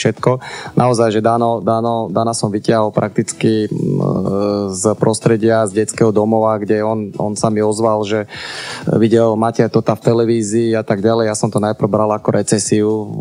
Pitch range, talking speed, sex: 110-115 Hz, 165 wpm, male